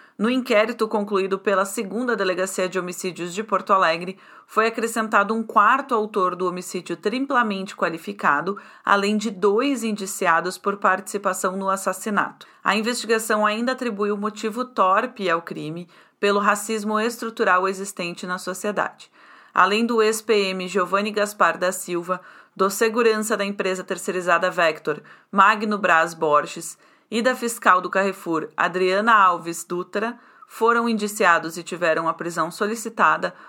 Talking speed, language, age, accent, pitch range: 135 wpm, Portuguese, 30-49, Brazilian, 185-220 Hz